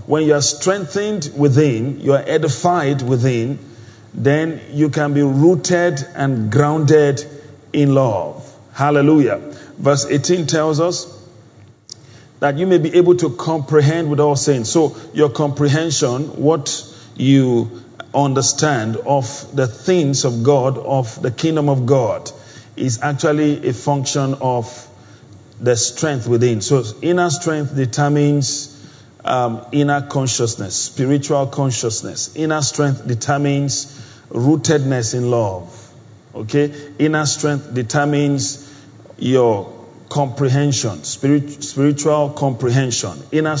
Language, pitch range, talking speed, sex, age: English, 125-150 Hz, 115 wpm, male, 40-59